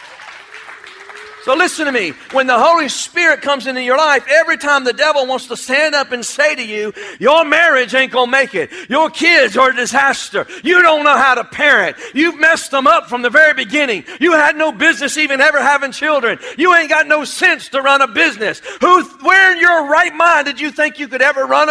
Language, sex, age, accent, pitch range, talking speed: English, male, 40-59, American, 285-350 Hz, 220 wpm